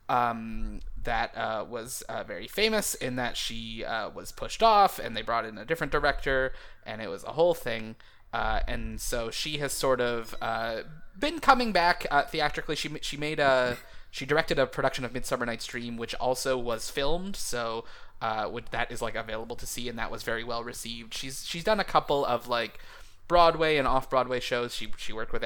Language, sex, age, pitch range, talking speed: English, male, 20-39, 115-145 Hz, 200 wpm